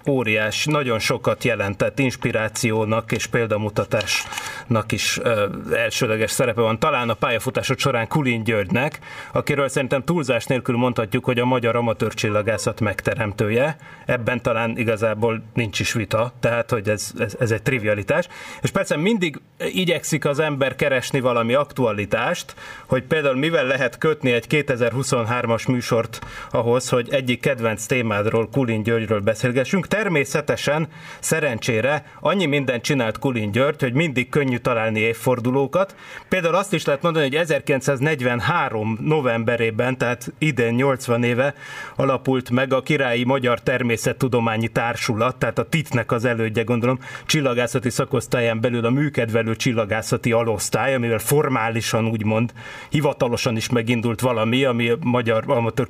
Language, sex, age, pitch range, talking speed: Hungarian, male, 30-49, 115-140 Hz, 130 wpm